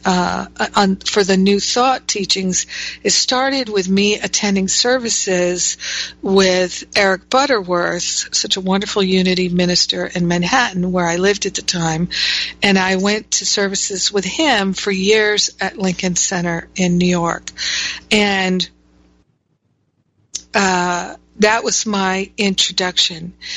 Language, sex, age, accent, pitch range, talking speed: English, female, 50-69, American, 180-205 Hz, 125 wpm